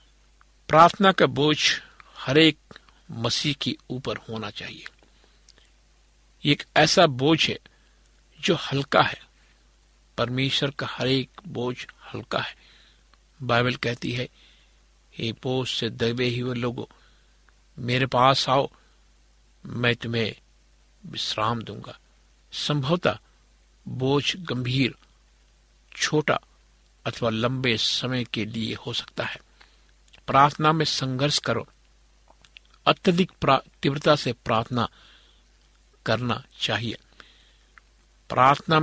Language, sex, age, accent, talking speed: Hindi, male, 60-79, native, 95 wpm